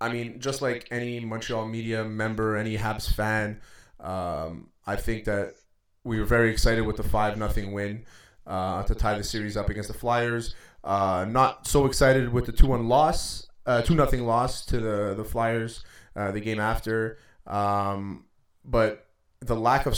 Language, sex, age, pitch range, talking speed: English, male, 20-39, 105-125 Hz, 175 wpm